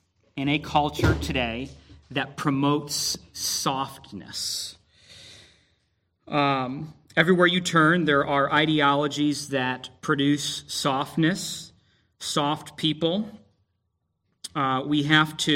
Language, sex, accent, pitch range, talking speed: English, male, American, 120-145 Hz, 90 wpm